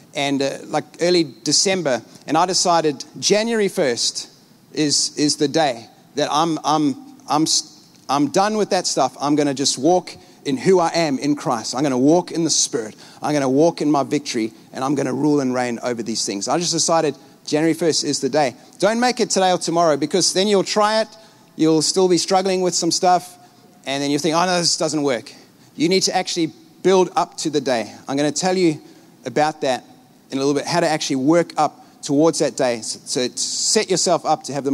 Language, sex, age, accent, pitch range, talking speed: English, male, 30-49, Australian, 150-190 Hz, 220 wpm